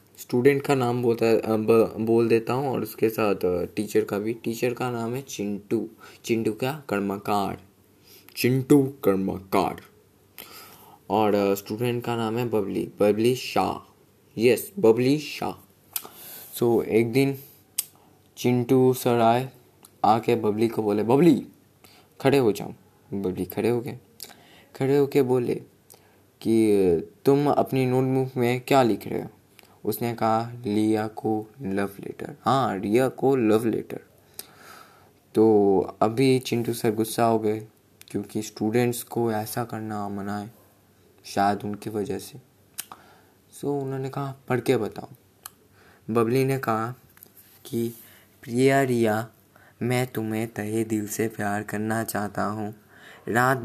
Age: 20-39